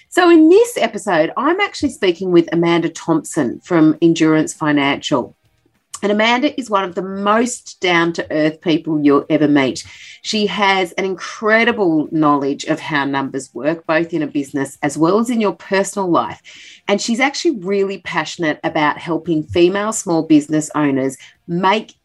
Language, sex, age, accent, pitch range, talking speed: English, female, 30-49, Australian, 150-210 Hz, 155 wpm